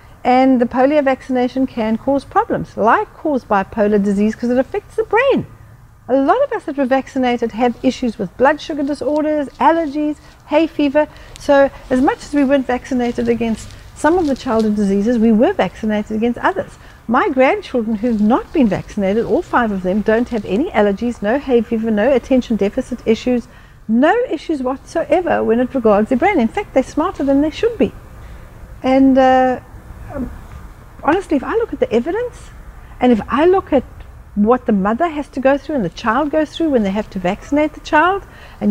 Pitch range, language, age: 225-295 Hz, English, 60-79